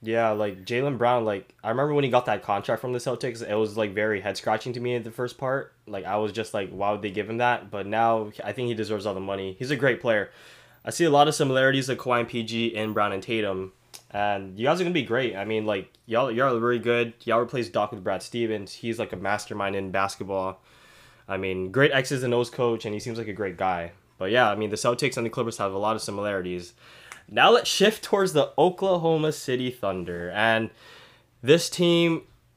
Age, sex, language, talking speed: 10-29, male, English, 240 wpm